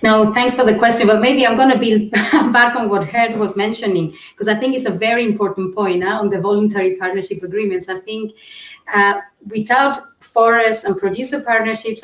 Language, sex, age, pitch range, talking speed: English, female, 30-49, 180-215 Hz, 190 wpm